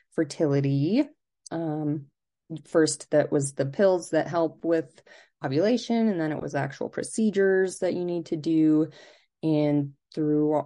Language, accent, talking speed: English, American, 135 wpm